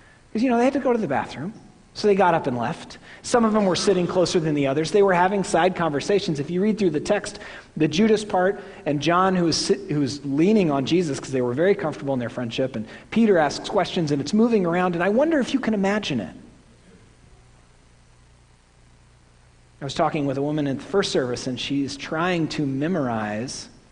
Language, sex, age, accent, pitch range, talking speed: English, male, 40-59, American, 125-175 Hz, 210 wpm